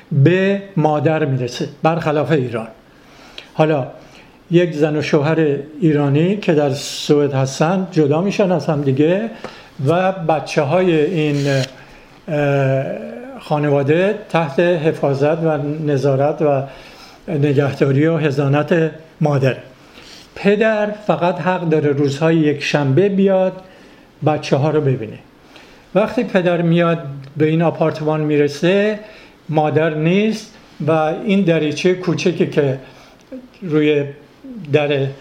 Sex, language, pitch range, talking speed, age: male, English, 150-185 Hz, 105 wpm, 50-69